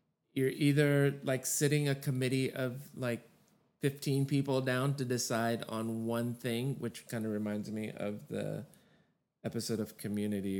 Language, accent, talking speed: English, American, 145 wpm